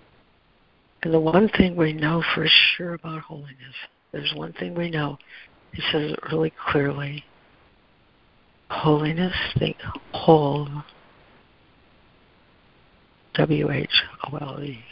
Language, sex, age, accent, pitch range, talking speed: English, female, 60-79, American, 140-165 Hz, 95 wpm